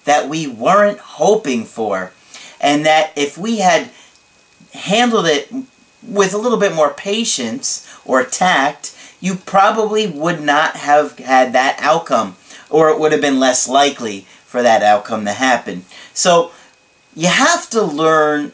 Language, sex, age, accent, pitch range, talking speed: English, male, 40-59, American, 130-190 Hz, 145 wpm